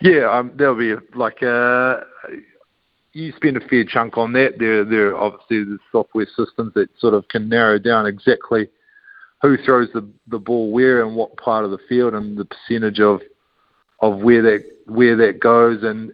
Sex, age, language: male, 50-69, English